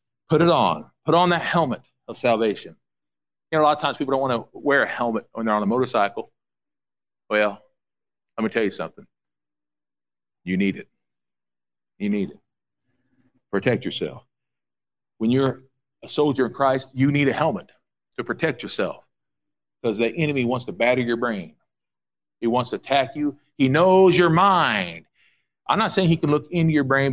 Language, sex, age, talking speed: English, male, 50-69, 175 wpm